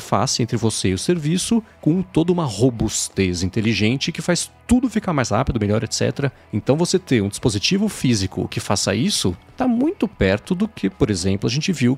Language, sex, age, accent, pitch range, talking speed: Portuguese, male, 40-59, Brazilian, 105-155 Hz, 190 wpm